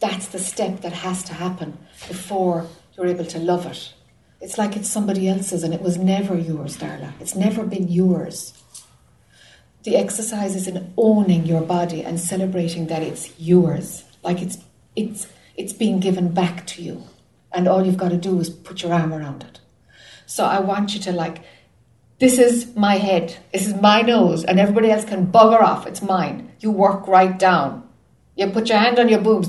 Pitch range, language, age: 170-205 Hz, English, 60-79